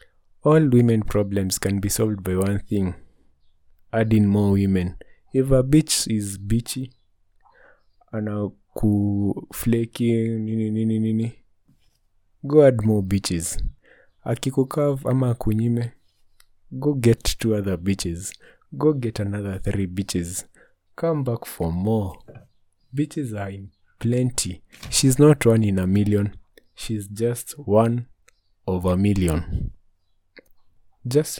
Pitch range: 95-115 Hz